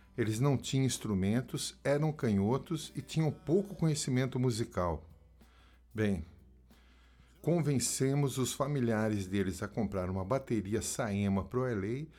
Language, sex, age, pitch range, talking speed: Portuguese, male, 50-69, 95-130 Hz, 120 wpm